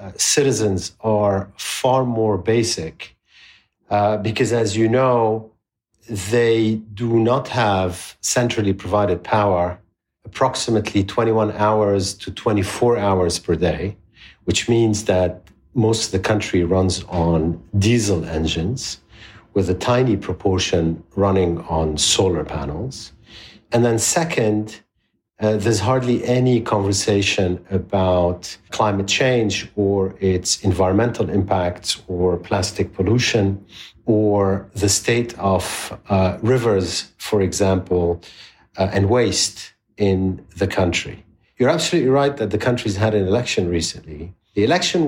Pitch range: 95-115 Hz